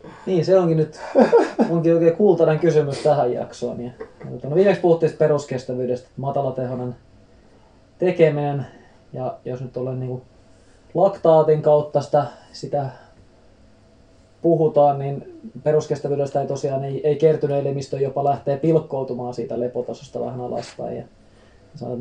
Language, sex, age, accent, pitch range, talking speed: Finnish, male, 20-39, native, 125-150 Hz, 125 wpm